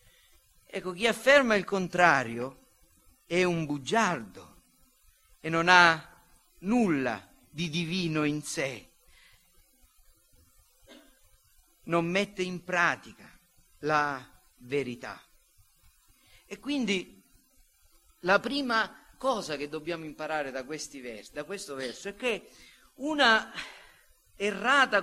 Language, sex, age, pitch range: Italian, male, 50-69, 170-255 Hz